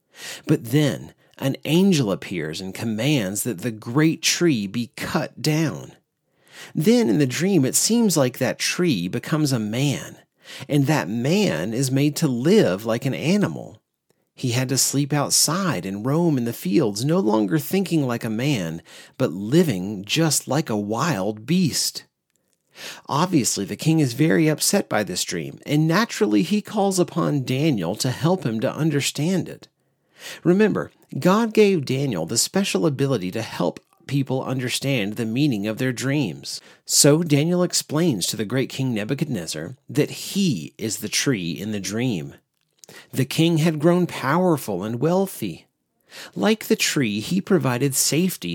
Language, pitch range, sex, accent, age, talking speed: English, 125-170 Hz, male, American, 40-59, 155 wpm